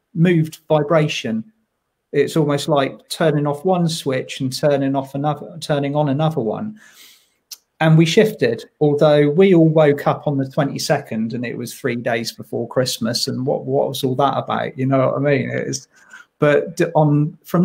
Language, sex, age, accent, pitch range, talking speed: English, male, 40-59, British, 135-160 Hz, 175 wpm